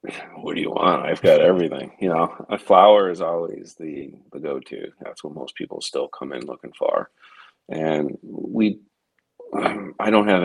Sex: male